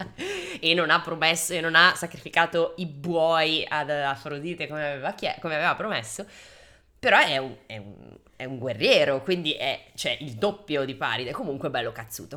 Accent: native